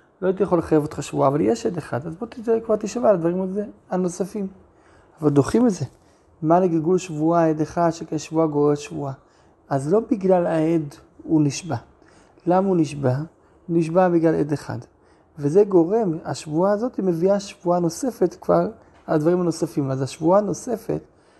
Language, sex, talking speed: Hebrew, male, 165 wpm